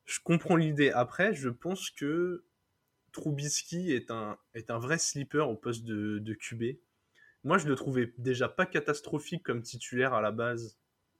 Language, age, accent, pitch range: French, 20-39, French, 120-150 Hz